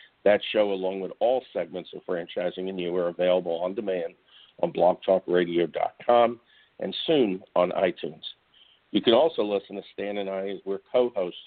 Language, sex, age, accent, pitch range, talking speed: English, male, 50-69, American, 95-115 Hz, 160 wpm